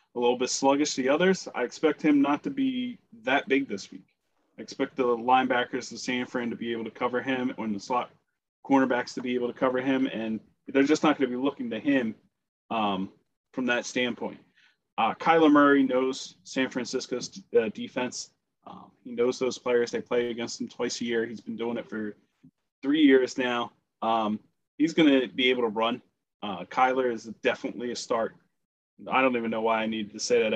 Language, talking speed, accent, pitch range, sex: English, 210 wpm, American, 120-150 Hz, male